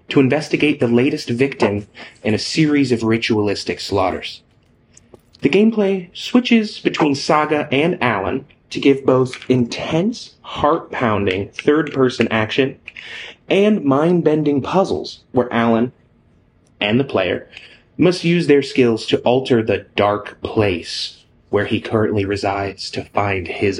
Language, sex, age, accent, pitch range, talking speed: English, male, 30-49, American, 110-145 Hz, 125 wpm